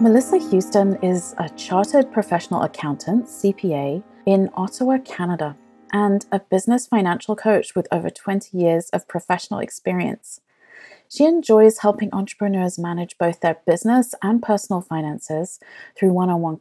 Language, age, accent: English, 30-49, British